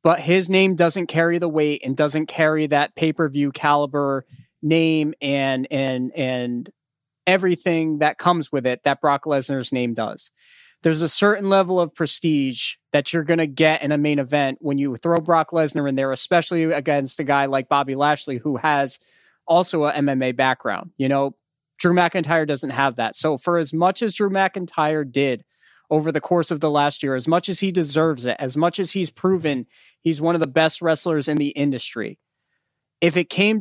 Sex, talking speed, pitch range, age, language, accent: male, 190 wpm, 140-170 Hz, 30-49, English, American